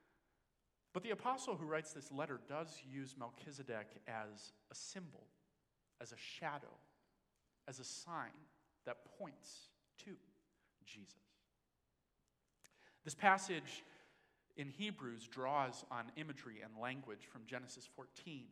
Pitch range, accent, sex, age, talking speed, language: 125-160 Hz, American, male, 40-59, 115 wpm, English